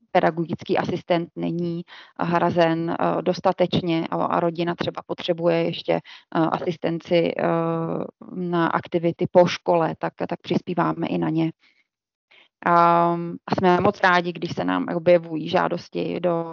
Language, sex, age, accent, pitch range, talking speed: Czech, female, 20-39, native, 170-180 Hz, 115 wpm